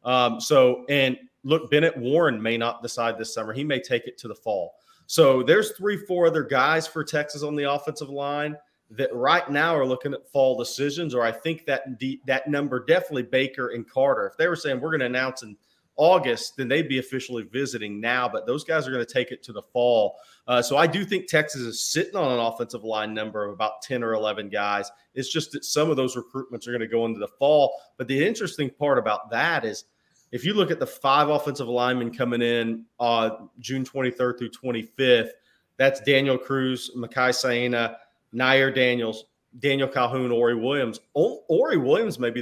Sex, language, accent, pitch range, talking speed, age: male, English, American, 120-150 Hz, 205 wpm, 30-49